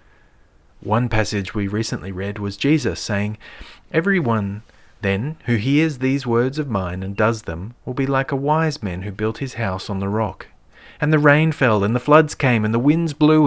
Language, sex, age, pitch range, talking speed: English, male, 40-59, 100-130 Hz, 195 wpm